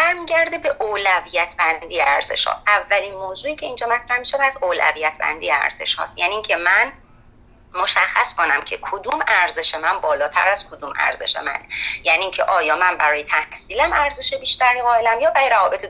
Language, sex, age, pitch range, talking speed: Persian, female, 30-49, 175-265 Hz, 170 wpm